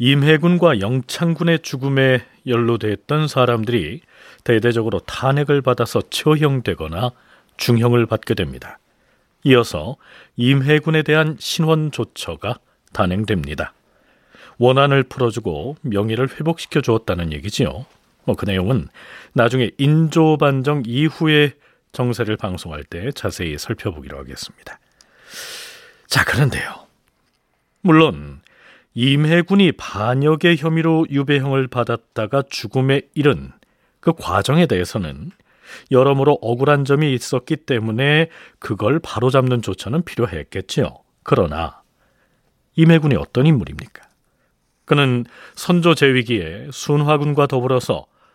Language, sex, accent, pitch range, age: Korean, male, native, 115-155 Hz, 40-59